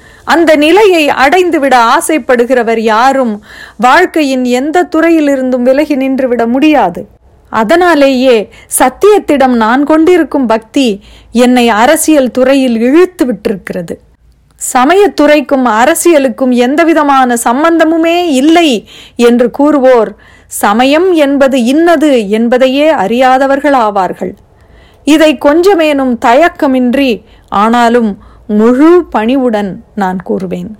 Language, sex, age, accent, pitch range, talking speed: Tamil, female, 30-49, native, 235-310 Hz, 85 wpm